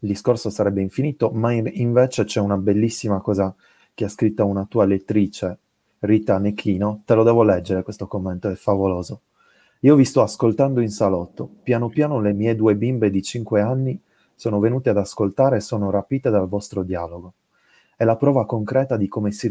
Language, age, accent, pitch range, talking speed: Italian, 30-49, native, 100-120 Hz, 180 wpm